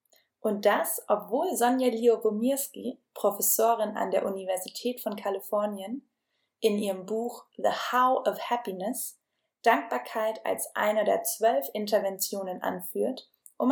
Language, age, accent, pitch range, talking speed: German, 20-39, German, 195-240 Hz, 115 wpm